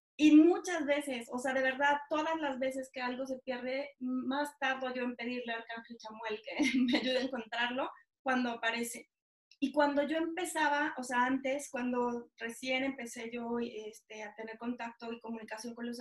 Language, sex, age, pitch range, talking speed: Spanish, female, 20-39, 240-280 Hz, 180 wpm